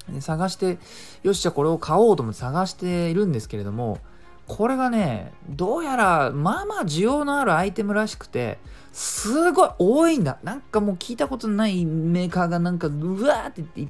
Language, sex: Japanese, male